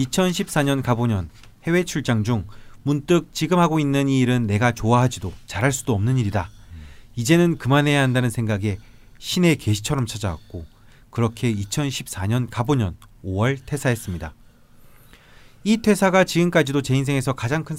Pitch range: 110-145 Hz